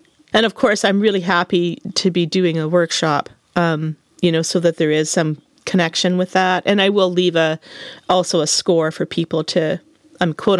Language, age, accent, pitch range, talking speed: English, 40-59, American, 165-195 Hz, 205 wpm